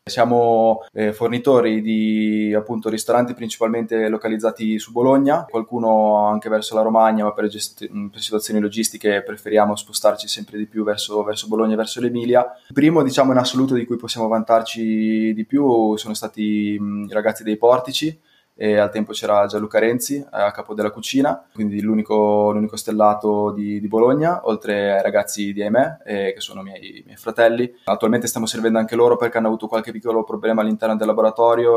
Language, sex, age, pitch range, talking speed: Italian, male, 20-39, 105-115 Hz, 175 wpm